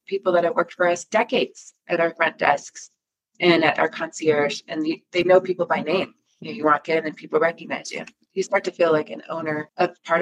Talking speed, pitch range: 215 wpm, 165-220 Hz